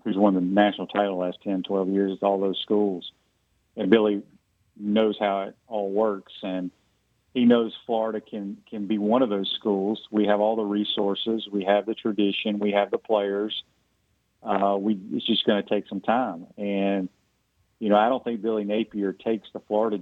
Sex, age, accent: male, 40-59, American